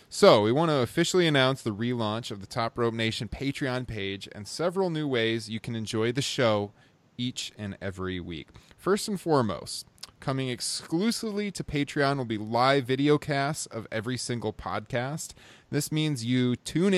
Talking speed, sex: 170 wpm, male